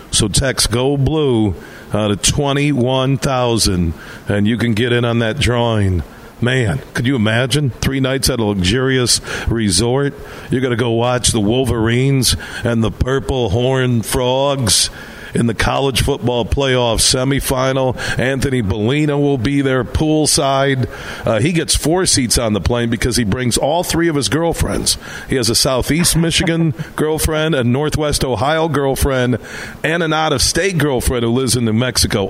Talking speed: 160 wpm